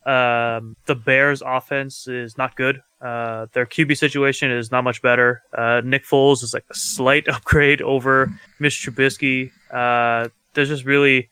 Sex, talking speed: male, 160 wpm